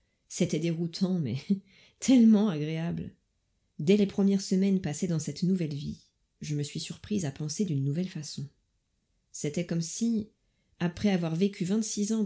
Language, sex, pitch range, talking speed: French, female, 145-190 Hz, 150 wpm